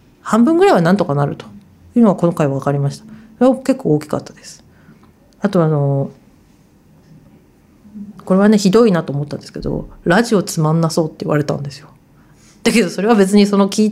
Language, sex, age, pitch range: Japanese, female, 40-59, 160-230 Hz